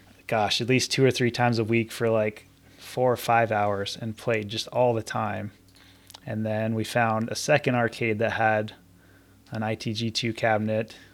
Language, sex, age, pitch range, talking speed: English, male, 20-39, 100-120 Hz, 180 wpm